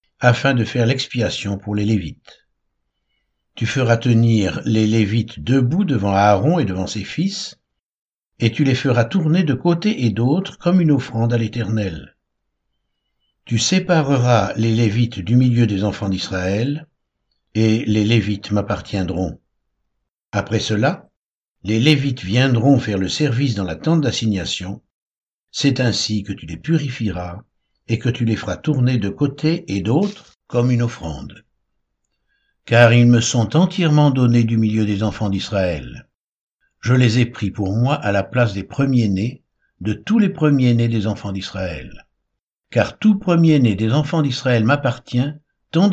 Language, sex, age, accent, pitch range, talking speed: French, male, 60-79, French, 100-140 Hz, 150 wpm